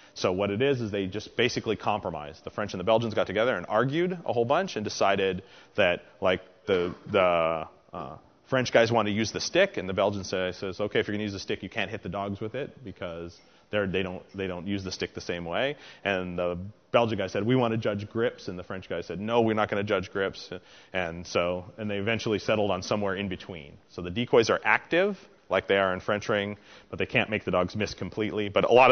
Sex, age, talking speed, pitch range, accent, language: male, 30-49, 250 wpm, 90-110 Hz, American, English